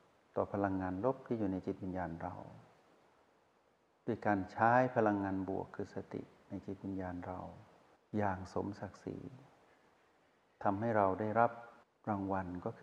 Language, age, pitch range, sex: Thai, 60-79, 95-120 Hz, male